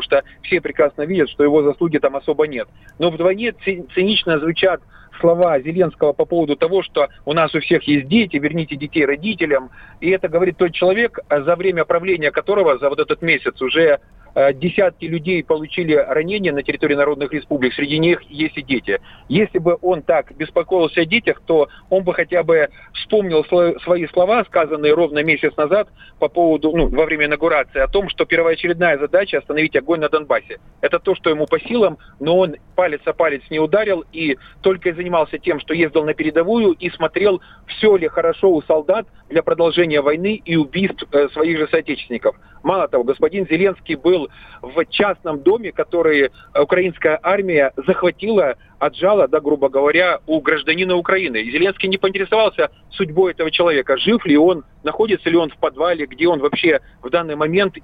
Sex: male